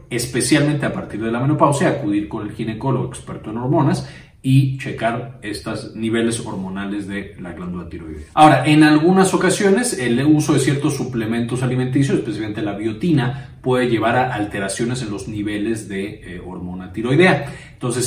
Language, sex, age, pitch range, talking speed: Spanish, male, 30-49, 110-145 Hz, 155 wpm